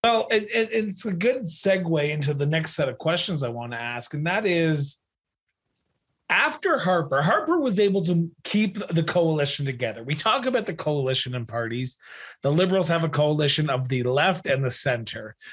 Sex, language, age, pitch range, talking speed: male, English, 30-49, 135-185 Hz, 185 wpm